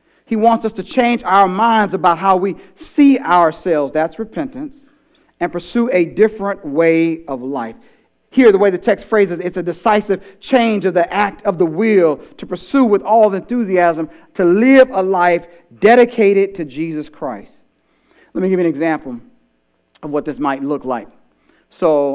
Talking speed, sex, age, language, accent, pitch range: 175 wpm, male, 40-59, English, American, 150-210 Hz